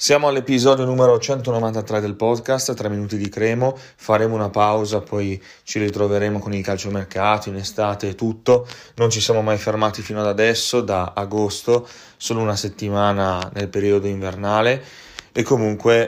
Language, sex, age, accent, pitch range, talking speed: Italian, male, 30-49, native, 100-110 Hz, 155 wpm